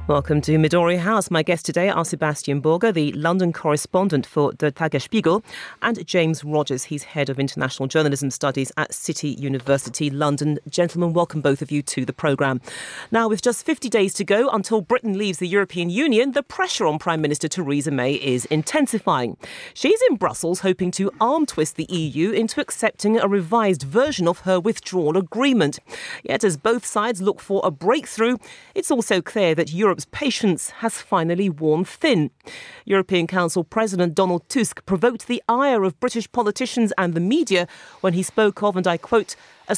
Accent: British